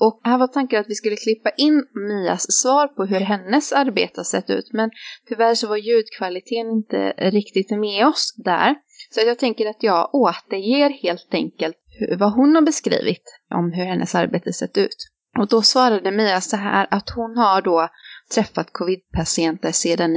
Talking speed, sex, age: 175 wpm, female, 20-39